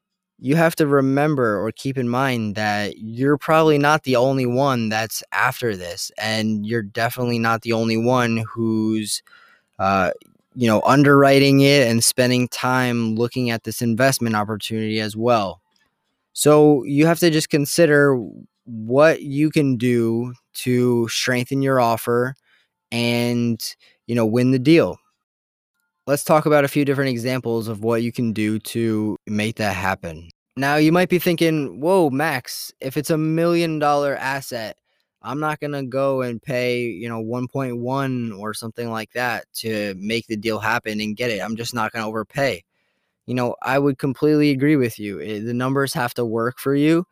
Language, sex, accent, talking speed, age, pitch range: English, male, American, 170 wpm, 20-39, 115-140 Hz